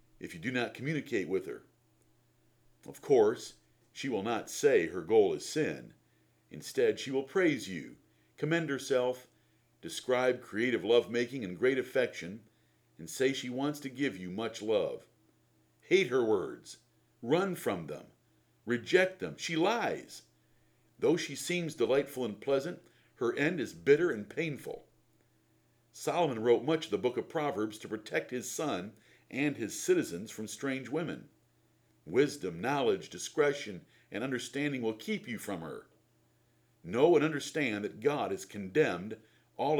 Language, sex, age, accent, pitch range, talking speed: English, male, 50-69, American, 120-195 Hz, 145 wpm